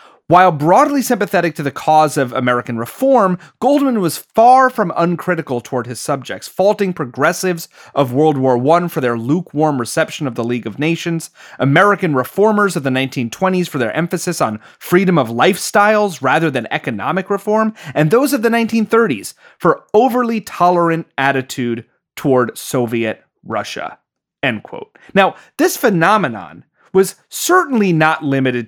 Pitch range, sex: 135-200 Hz, male